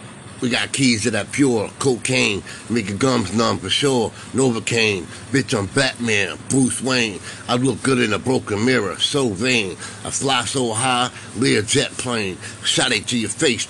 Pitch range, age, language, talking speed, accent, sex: 110-130 Hz, 50-69, English, 180 wpm, American, male